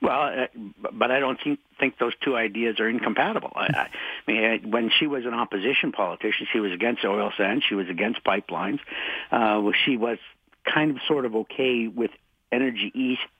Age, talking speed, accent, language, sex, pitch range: 60-79, 175 wpm, American, English, male, 110-135 Hz